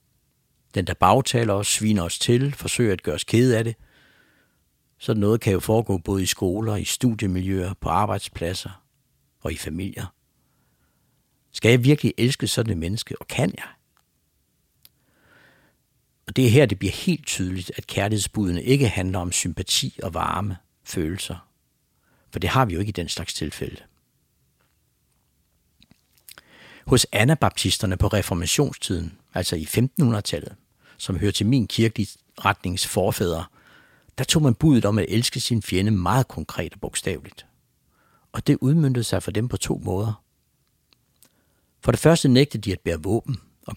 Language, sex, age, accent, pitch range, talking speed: English, male, 60-79, Danish, 90-120 Hz, 150 wpm